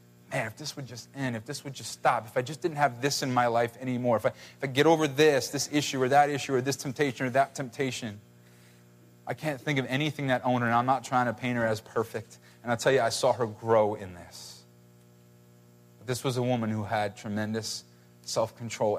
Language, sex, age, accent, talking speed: English, male, 30-49, American, 235 wpm